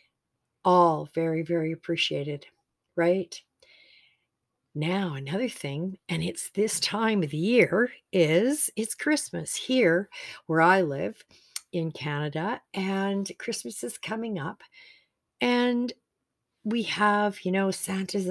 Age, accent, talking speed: 50-69, American, 115 wpm